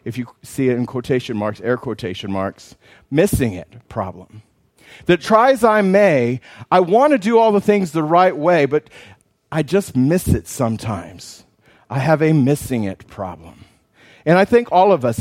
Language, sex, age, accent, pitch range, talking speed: English, male, 40-59, American, 115-165 Hz, 180 wpm